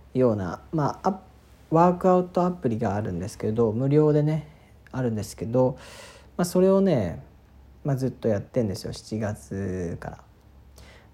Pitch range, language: 105-145 Hz, Japanese